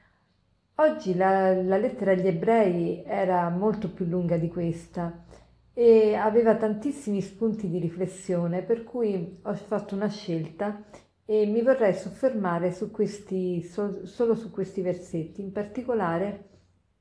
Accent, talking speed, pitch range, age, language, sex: native, 130 wpm, 175-225 Hz, 40-59, Italian, female